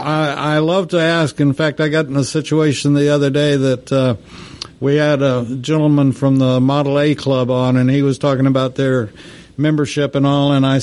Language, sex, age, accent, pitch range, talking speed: English, male, 60-79, American, 135-165 Hz, 205 wpm